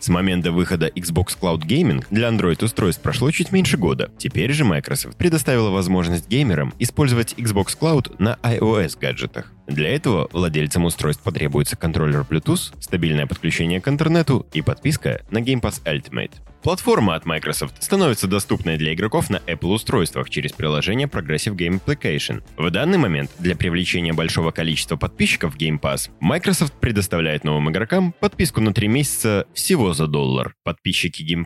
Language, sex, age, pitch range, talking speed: Russian, male, 20-39, 80-125 Hz, 150 wpm